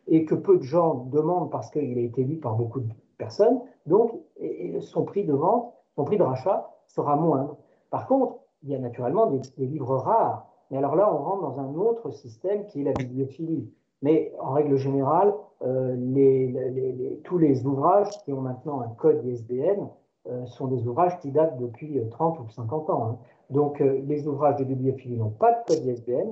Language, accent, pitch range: French, French, 130-180 Hz